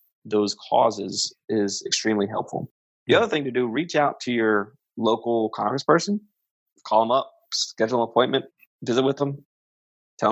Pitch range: 105-130 Hz